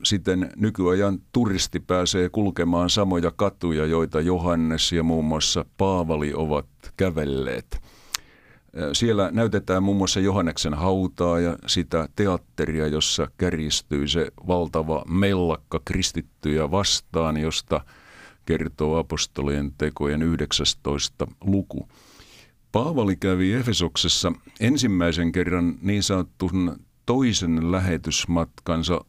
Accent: native